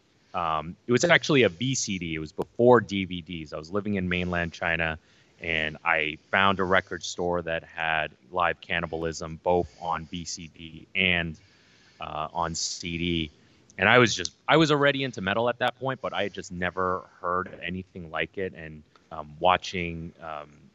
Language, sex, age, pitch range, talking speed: English, male, 30-49, 85-110 Hz, 170 wpm